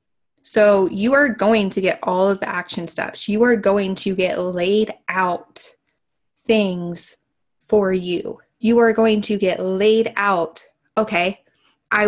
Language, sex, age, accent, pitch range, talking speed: English, female, 20-39, American, 185-225 Hz, 150 wpm